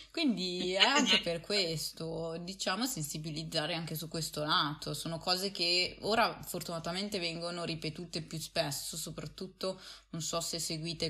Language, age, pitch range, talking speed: Italian, 20-39, 155-180 Hz, 135 wpm